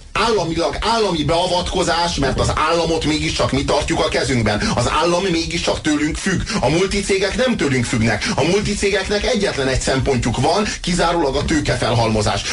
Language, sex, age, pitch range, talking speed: Hungarian, male, 30-49, 105-150 Hz, 145 wpm